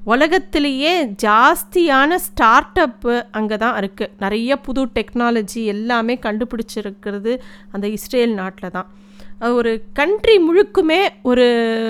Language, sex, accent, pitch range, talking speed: Tamil, female, native, 200-250 Hz, 100 wpm